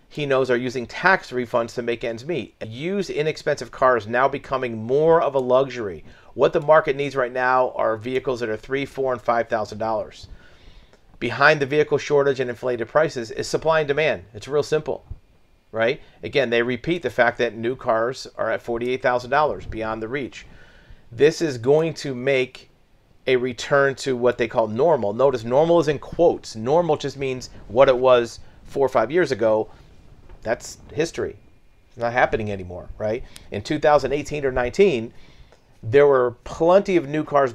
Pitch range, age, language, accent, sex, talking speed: 120-145 Hz, 40-59, English, American, male, 170 wpm